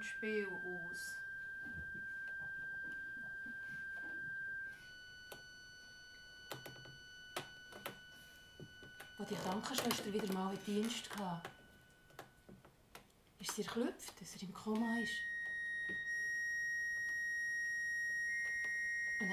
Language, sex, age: German, female, 30-49